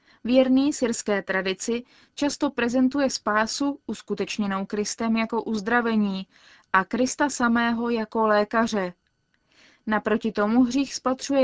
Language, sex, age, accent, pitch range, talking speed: Czech, female, 20-39, native, 210-250 Hz, 100 wpm